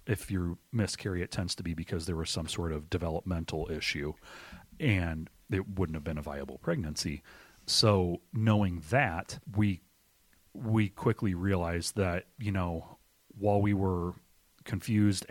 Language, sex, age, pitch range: English, male, 30-49, 85-105 Hz